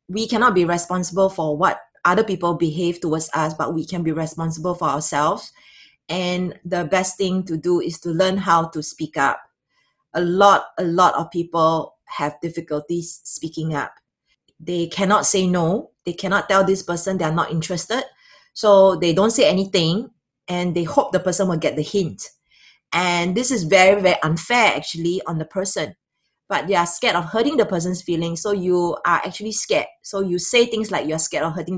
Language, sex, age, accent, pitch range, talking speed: English, female, 20-39, Malaysian, 165-200 Hz, 190 wpm